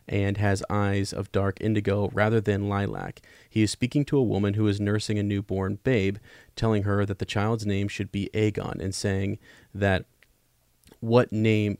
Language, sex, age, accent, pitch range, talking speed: English, male, 30-49, American, 100-110 Hz, 180 wpm